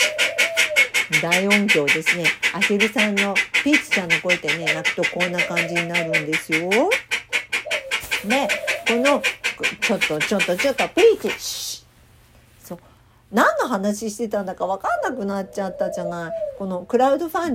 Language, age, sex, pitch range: Japanese, 50-69, female, 175-280 Hz